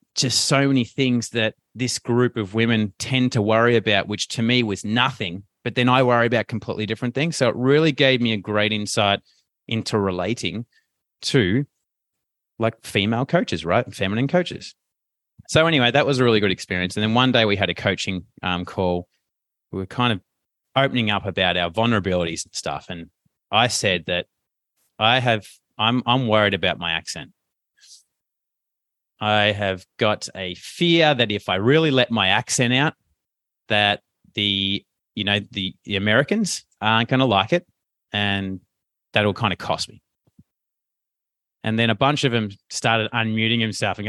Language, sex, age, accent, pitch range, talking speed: English, male, 30-49, Australian, 100-135 Hz, 170 wpm